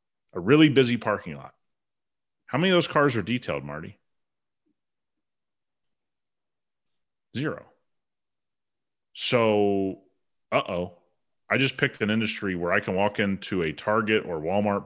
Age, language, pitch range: 30-49, English, 95-135 Hz